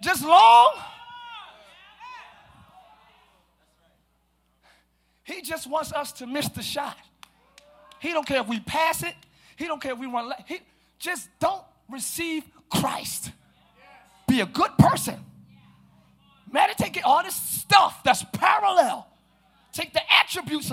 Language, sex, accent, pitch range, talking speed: English, male, American, 230-345 Hz, 115 wpm